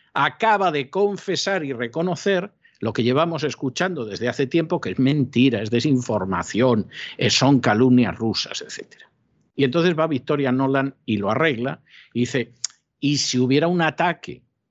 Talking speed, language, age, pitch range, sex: 145 wpm, Spanish, 50-69, 120-165 Hz, male